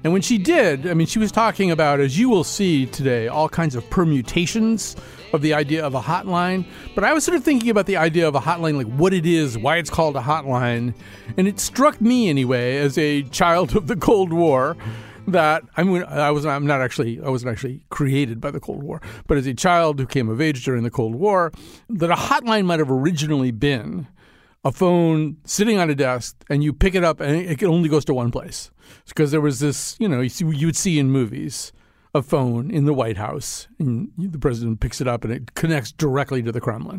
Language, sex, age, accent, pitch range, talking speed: English, male, 50-69, American, 130-175 Hz, 230 wpm